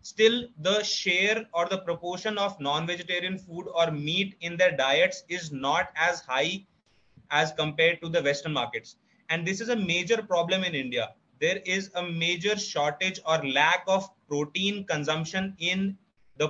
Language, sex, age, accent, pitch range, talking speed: English, male, 20-39, Indian, 160-200 Hz, 160 wpm